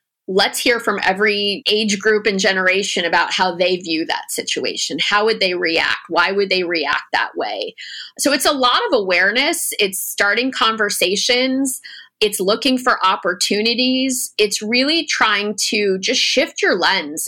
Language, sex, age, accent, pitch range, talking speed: English, female, 30-49, American, 180-220 Hz, 155 wpm